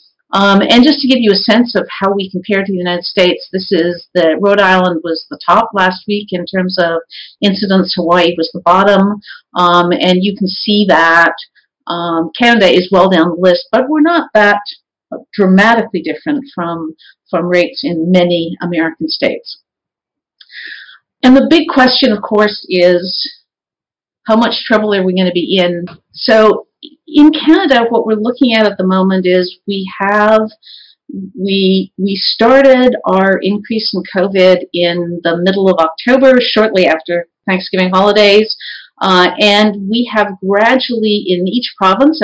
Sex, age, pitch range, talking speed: female, 50-69, 180-235 Hz, 160 wpm